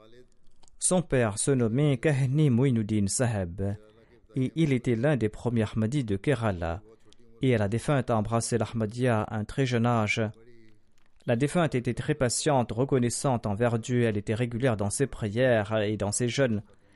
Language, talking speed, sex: French, 155 wpm, male